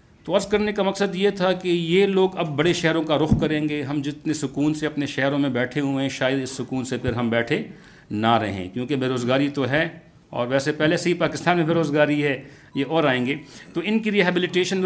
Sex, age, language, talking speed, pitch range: male, 50-69, Urdu, 230 wpm, 135-170 Hz